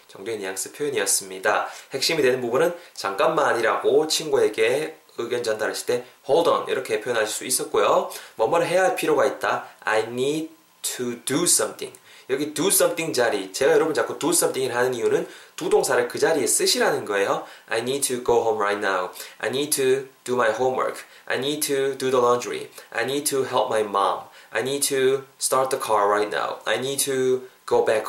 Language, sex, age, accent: Korean, male, 20-39, native